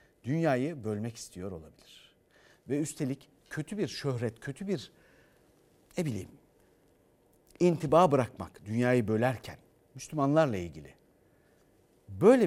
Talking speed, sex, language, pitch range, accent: 95 wpm, male, Turkish, 125-195 Hz, native